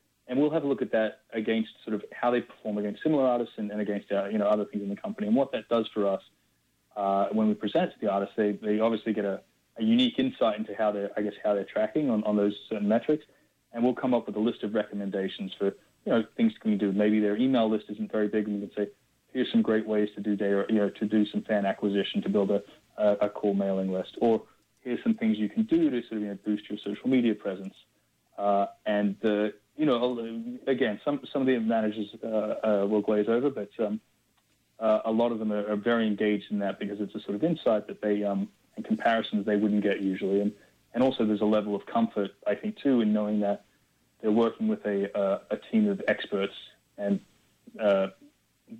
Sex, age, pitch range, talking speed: male, 30-49, 100-120 Hz, 240 wpm